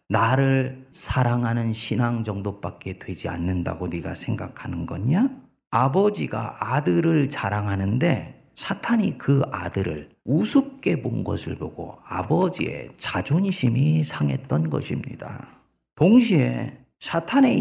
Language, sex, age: Korean, male, 40-59